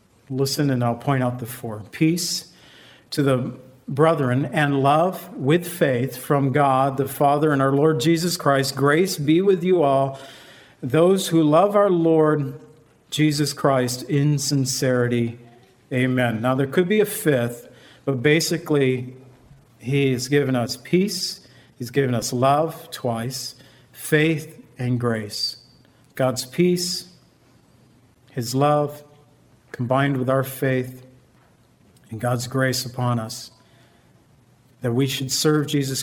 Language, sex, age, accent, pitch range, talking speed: English, male, 50-69, American, 125-150 Hz, 130 wpm